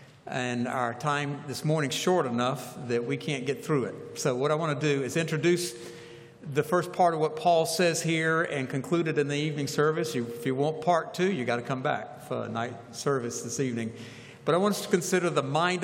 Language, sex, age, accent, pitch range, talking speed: English, male, 60-79, American, 140-185 Hz, 225 wpm